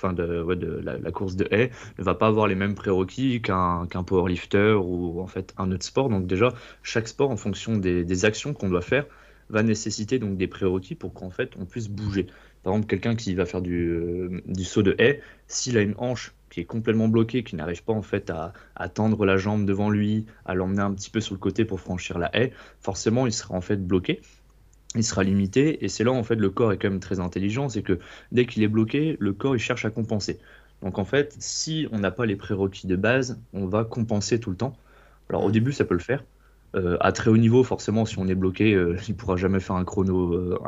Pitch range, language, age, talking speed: 95-115 Hz, French, 20-39, 245 wpm